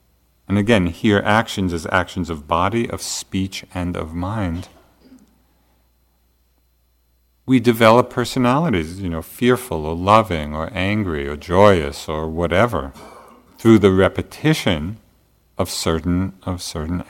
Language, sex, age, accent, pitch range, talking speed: English, male, 50-69, American, 70-105 Hz, 115 wpm